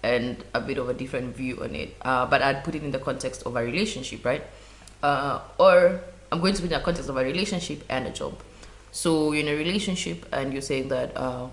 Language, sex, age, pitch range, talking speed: English, female, 20-39, 120-145 Hz, 240 wpm